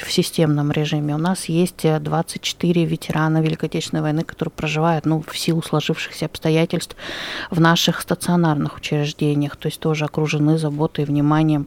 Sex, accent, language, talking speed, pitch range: female, native, Russian, 145 wpm, 155-175 Hz